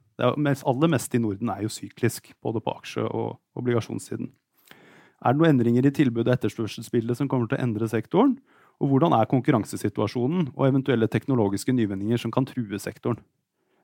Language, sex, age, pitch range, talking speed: English, male, 30-49, 120-145 Hz, 185 wpm